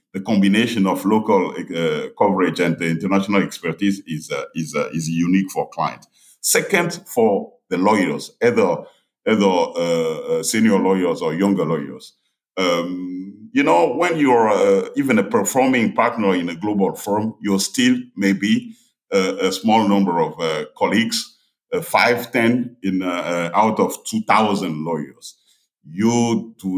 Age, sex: 50-69, male